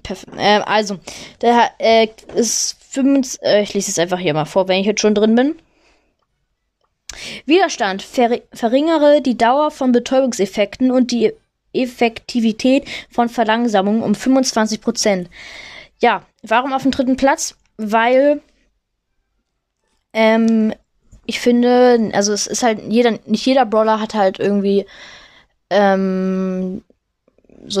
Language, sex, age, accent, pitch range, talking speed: German, female, 20-39, German, 200-245 Hz, 125 wpm